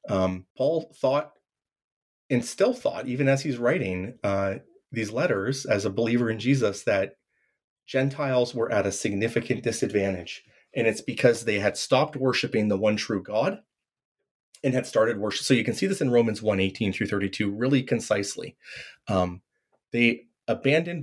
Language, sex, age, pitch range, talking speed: English, male, 30-49, 100-125 Hz, 160 wpm